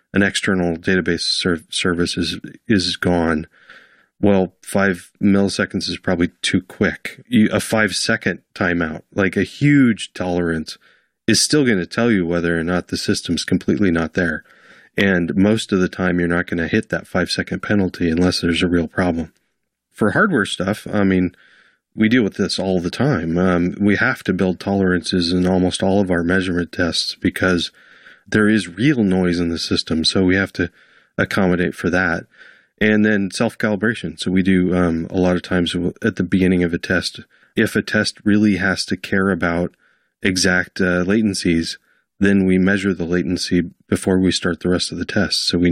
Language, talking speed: English, 180 wpm